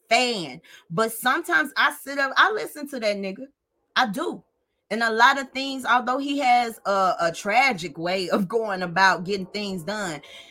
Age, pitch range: 20-39, 190-255 Hz